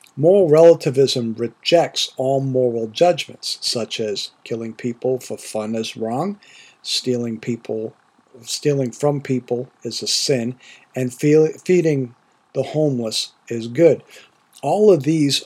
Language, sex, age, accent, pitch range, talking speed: English, male, 50-69, American, 125-160 Hz, 125 wpm